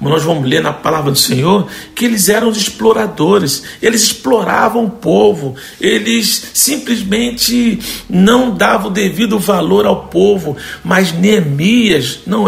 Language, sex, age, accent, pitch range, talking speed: Portuguese, male, 60-79, Brazilian, 155-210 Hz, 135 wpm